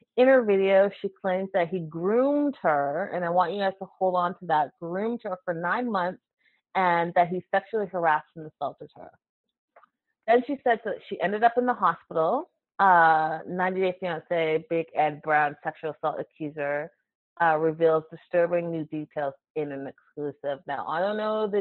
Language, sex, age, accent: English, female, 30-49, American